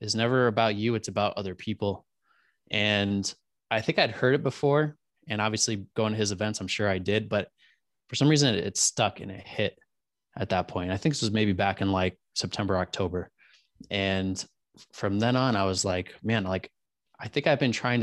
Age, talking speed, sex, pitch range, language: 20-39, 205 wpm, male, 100-120 Hz, English